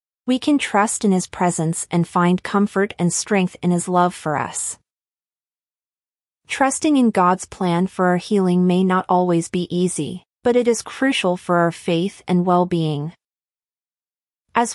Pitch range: 175-220 Hz